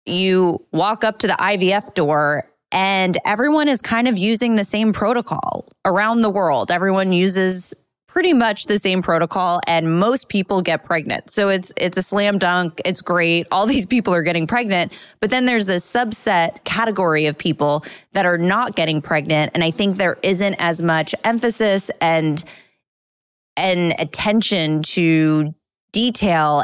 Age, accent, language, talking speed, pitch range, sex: 20-39, American, English, 165 wpm, 160-205 Hz, female